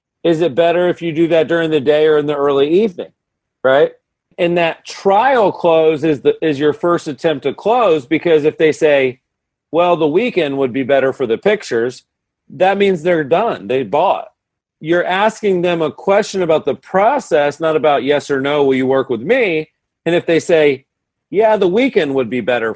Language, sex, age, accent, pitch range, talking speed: English, male, 40-59, American, 135-170 Hz, 200 wpm